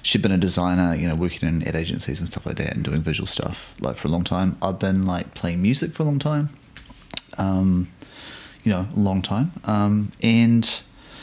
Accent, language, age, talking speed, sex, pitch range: Australian, English, 30-49, 215 wpm, male, 90-110 Hz